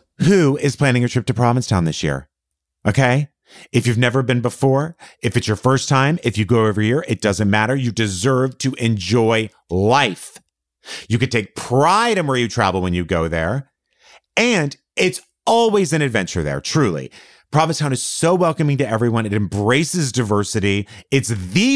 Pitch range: 100-140 Hz